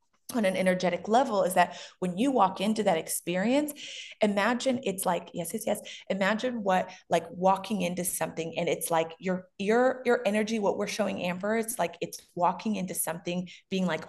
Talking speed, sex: 185 wpm, female